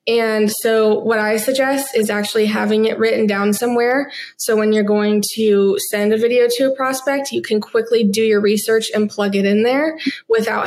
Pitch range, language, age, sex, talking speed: 210-235 Hz, English, 20-39, female, 195 wpm